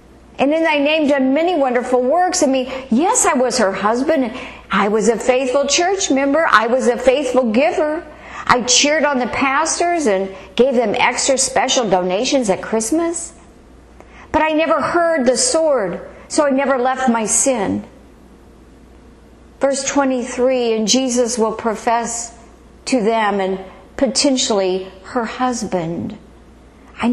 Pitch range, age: 200-270 Hz, 50-69